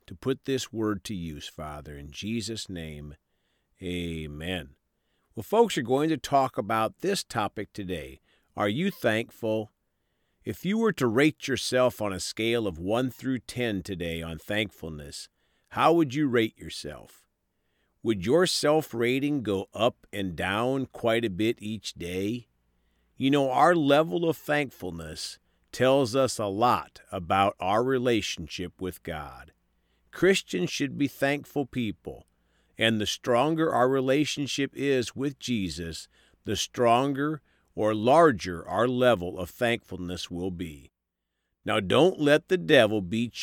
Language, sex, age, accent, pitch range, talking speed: English, male, 50-69, American, 85-130 Hz, 140 wpm